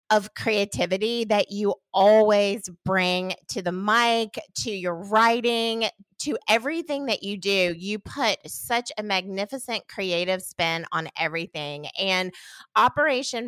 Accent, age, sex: American, 30-49, female